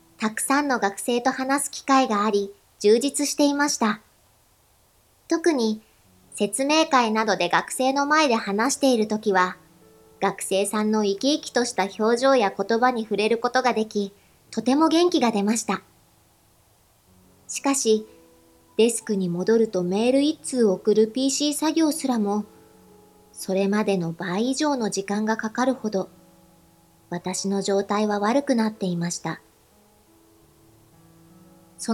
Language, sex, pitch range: Japanese, male, 175-230 Hz